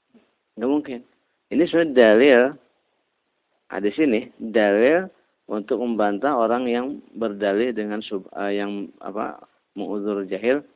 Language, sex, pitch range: Indonesian, male, 100-125 Hz